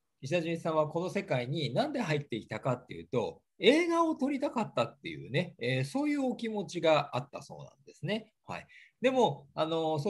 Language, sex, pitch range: Japanese, male, 125-210 Hz